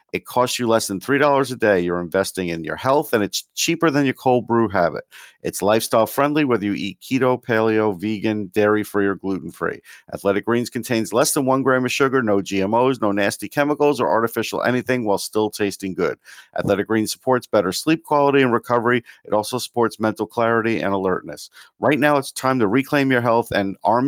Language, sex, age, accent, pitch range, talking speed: English, male, 50-69, American, 105-130 Hz, 205 wpm